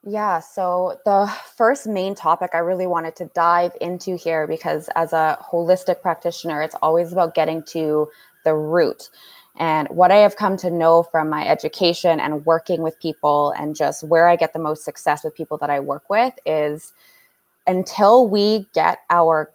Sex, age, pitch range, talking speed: female, 20-39, 160-190 Hz, 180 wpm